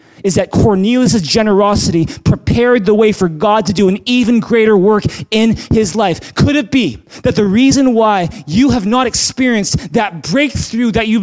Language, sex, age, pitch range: English, male, 30-49, 185-235 Hz